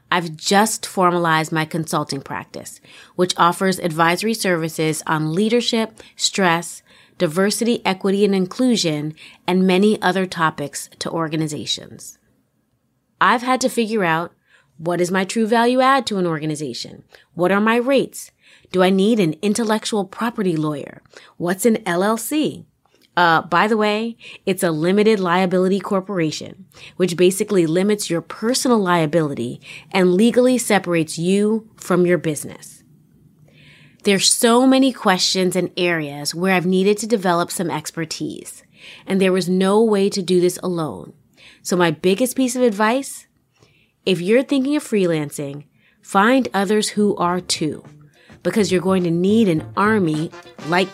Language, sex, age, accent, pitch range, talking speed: English, female, 30-49, American, 170-215 Hz, 140 wpm